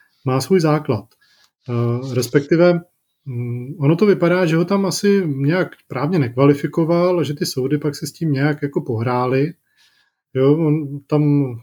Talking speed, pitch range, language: 130 wpm, 135-155 Hz, Czech